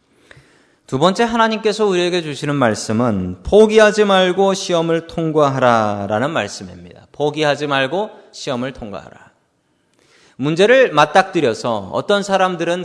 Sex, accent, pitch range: male, native, 130-205 Hz